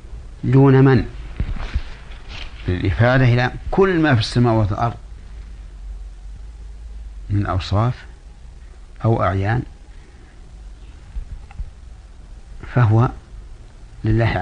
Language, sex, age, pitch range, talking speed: Arabic, male, 60-79, 75-120 Hz, 60 wpm